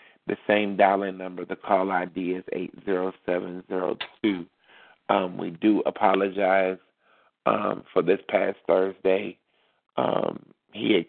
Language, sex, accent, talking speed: English, male, American, 115 wpm